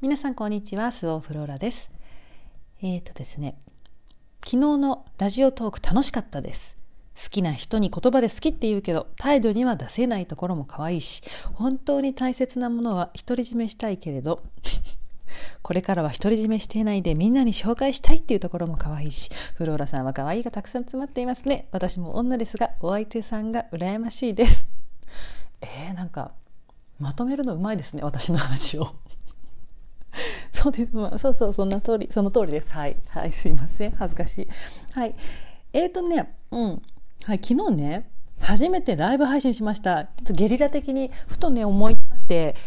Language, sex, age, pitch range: Japanese, female, 40-59, 160-240 Hz